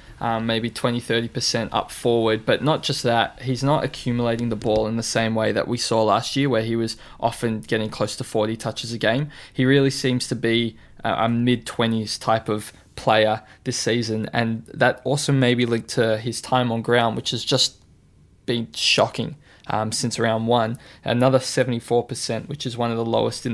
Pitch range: 110-130 Hz